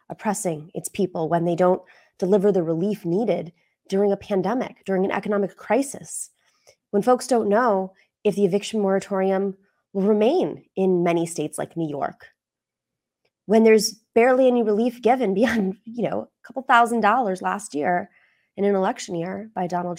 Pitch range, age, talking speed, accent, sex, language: 175-240 Hz, 20-39, 160 wpm, American, female, English